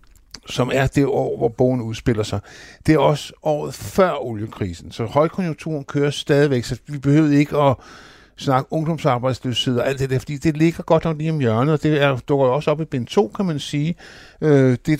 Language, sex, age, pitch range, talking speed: Danish, male, 60-79, 120-150 Hz, 205 wpm